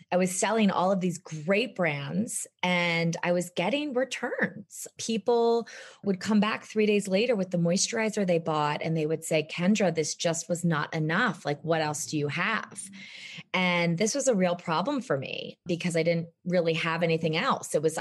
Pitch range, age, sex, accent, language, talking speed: 165-205 Hz, 20-39, female, American, English, 195 wpm